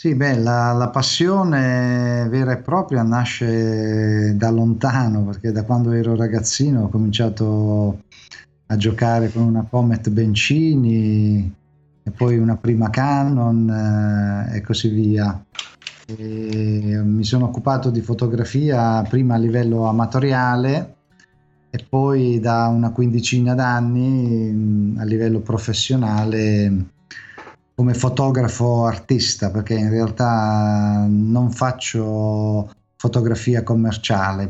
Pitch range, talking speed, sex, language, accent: 105-120 Hz, 105 wpm, male, Italian, native